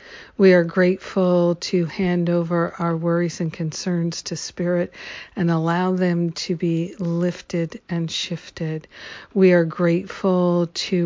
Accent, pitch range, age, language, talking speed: American, 170-185 Hz, 50-69, English, 130 wpm